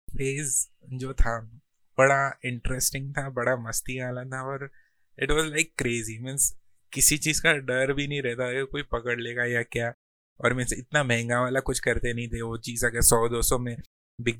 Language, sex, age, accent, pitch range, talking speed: Hindi, male, 20-39, native, 115-135 Hz, 190 wpm